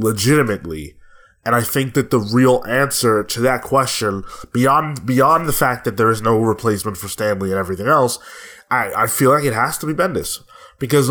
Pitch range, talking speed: 110-135 Hz, 190 wpm